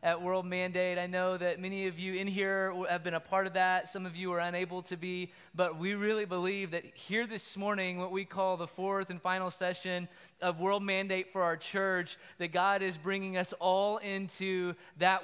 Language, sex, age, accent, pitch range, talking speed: English, male, 20-39, American, 175-195 Hz, 215 wpm